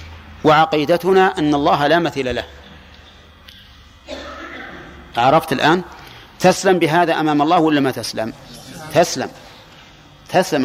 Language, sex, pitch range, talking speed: Arabic, male, 120-160 Hz, 95 wpm